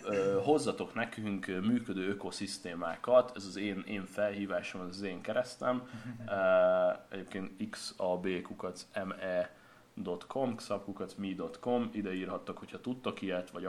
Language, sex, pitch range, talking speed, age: Hungarian, male, 95-120 Hz, 95 wpm, 30-49